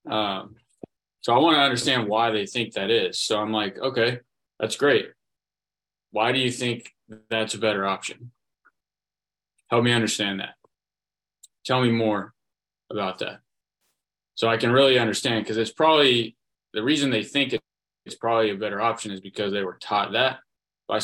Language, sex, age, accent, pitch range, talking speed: English, male, 20-39, American, 100-120 Hz, 165 wpm